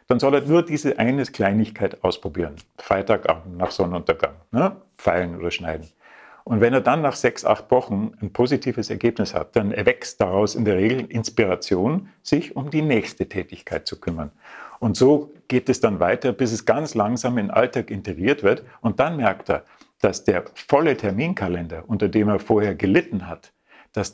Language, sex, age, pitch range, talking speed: German, male, 50-69, 100-125 Hz, 175 wpm